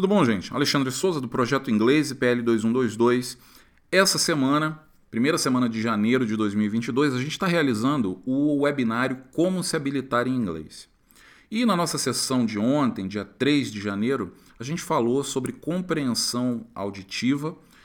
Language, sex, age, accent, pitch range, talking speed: Portuguese, male, 40-59, Brazilian, 110-155 Hz, 150 wpm